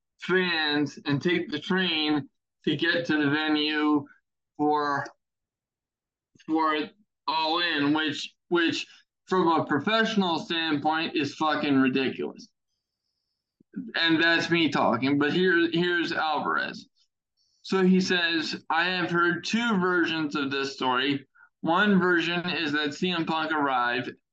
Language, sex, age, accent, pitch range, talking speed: English, male, 20-39, American, 145-175 Hz, 120 wpm